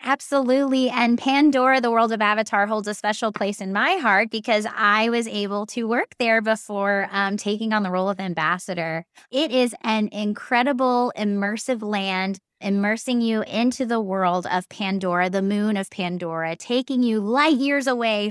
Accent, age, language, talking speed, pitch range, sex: American, 20-39, English, 165 wpm, 185-235 Hz, female